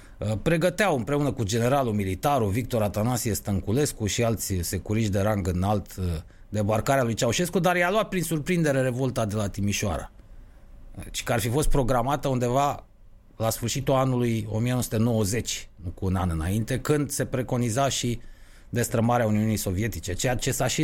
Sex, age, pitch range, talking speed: male, 30-49, 100-140 Hz, 155 wpm